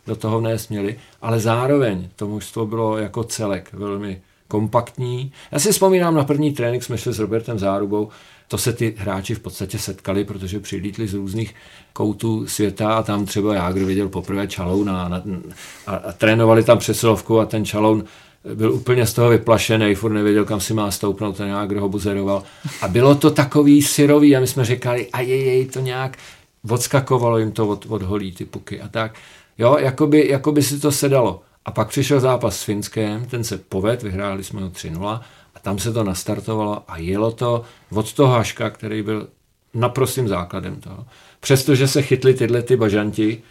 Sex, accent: male, native